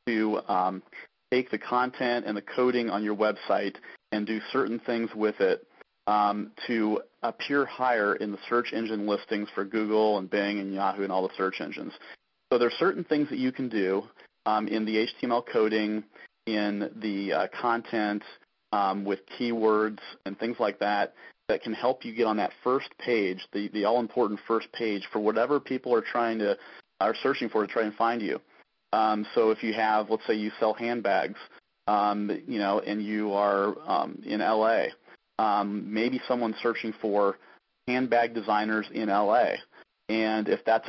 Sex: male